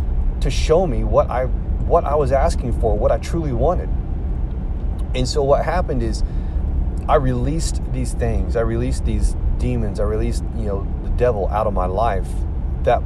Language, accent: English, American